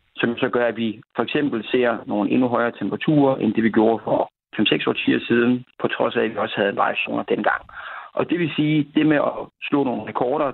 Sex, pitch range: male, 115-145 Hz